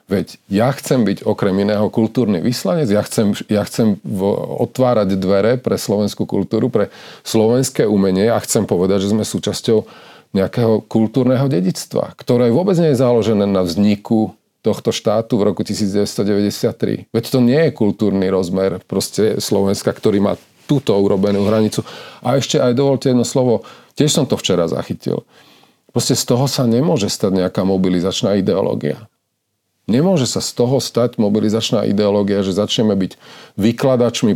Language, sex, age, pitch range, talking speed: Slovak, male, 40-59, 100-120 Hz, 145 wpm